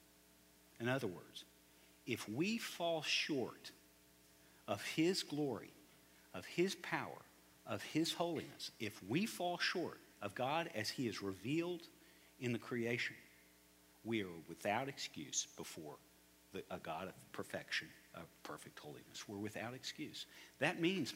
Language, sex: English, male